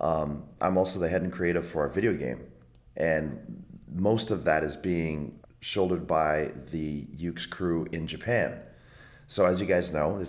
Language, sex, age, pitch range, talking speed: English, male, 30-49, 70-90 Hz, 175 wpm